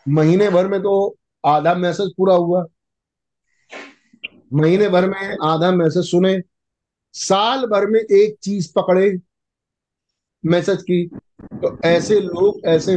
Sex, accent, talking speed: male, native, 120 wpm